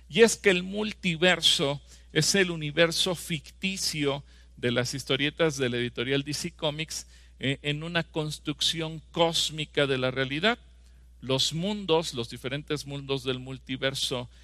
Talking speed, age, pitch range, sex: 135 wpm, 50-69, 130-160 Hz, male